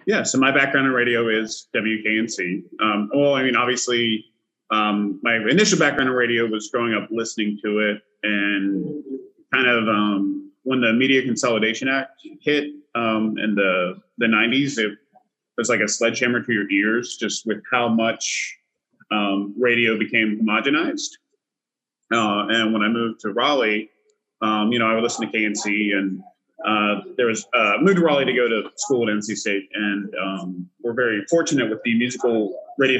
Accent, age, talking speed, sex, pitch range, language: American, 30-49, 170 wpm, male, 105-130 Hz, English